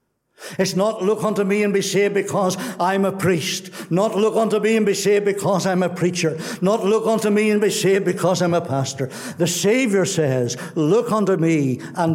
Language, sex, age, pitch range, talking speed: English, male, 60-79, 125-185 Hz, 205 wpm